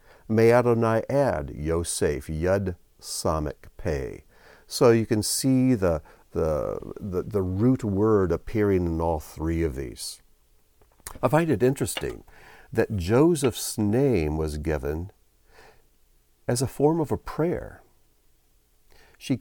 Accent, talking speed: American, 120 wpm